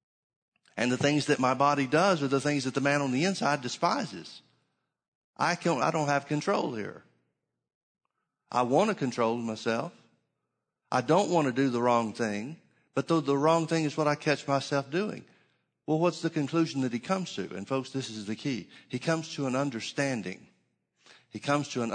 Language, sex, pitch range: English, male, 115-145 Hz